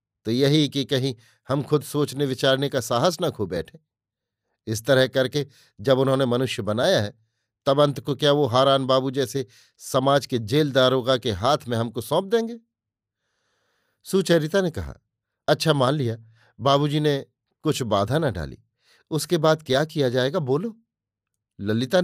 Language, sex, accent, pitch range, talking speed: Hindi, male, native, 120-150 Hz, 160 wpm